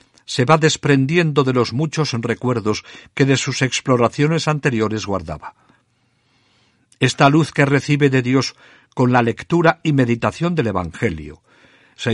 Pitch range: 110-135 Hz